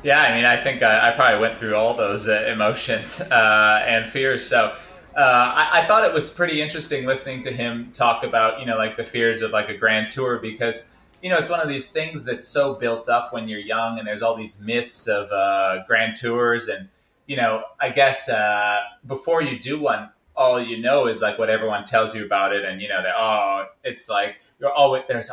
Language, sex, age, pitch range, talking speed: English, male, 20-39, 110-140 Hz, 225 wpm